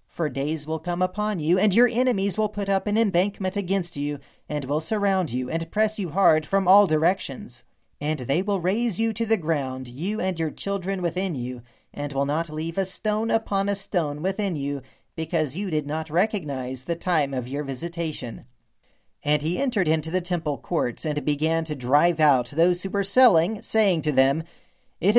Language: English